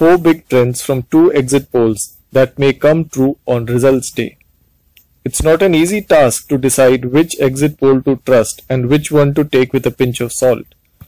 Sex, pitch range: male, 130-165 Hz